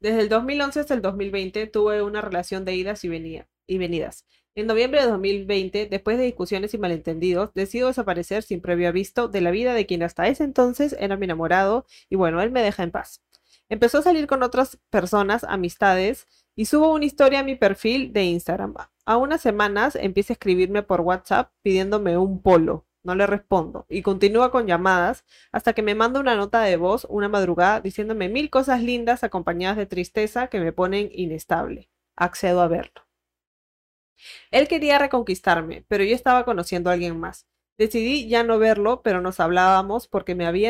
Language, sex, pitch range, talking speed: Spanish, female, 180-235 Hz, 185 wpm